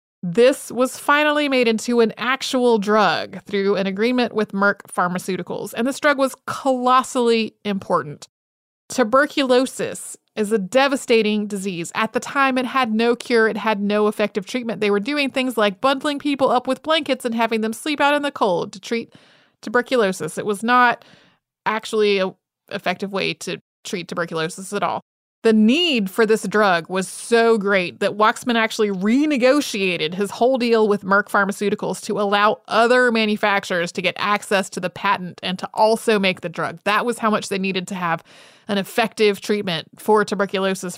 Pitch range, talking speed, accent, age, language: 200-255 Hz, 170 wpm, American, 30-49, English